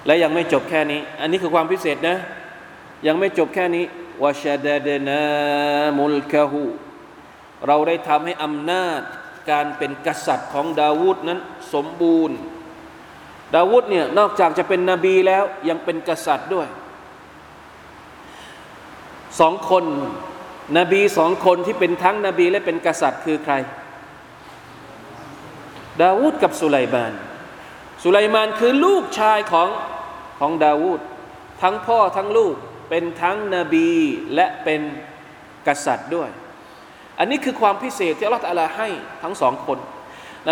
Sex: male